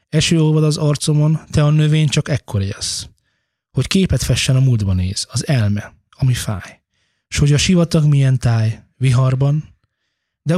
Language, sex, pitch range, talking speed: Hungarian, male, 110-145 Hz, 155 wpm